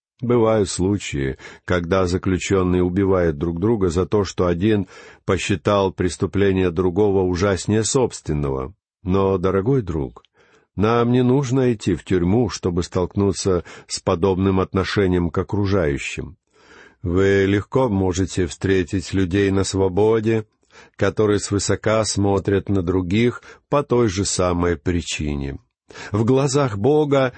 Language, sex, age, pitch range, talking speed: Russian, male, 50-69, 95-120 Hz, 115 wpm